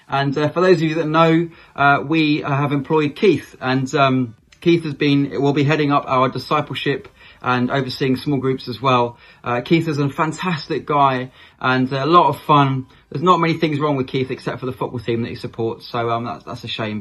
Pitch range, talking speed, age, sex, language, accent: 125-150 Hz, 220 wpm, 20-39, male, English, British